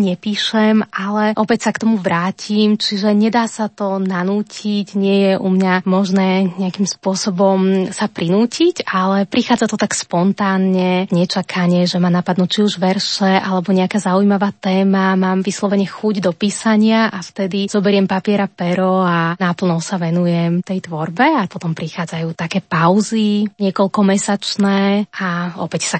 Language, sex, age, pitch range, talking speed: Slovak, female, 20-39, 185-215 Hz, 145 wpm